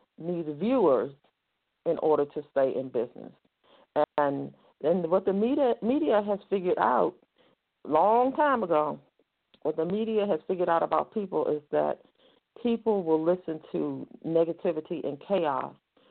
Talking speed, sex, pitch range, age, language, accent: 140 wpm, female, 145-195 Hz, 50-69, English, American